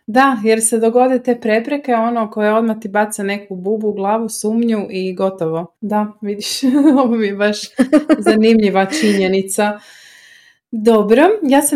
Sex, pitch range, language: female, 180-225 Hz, Croatian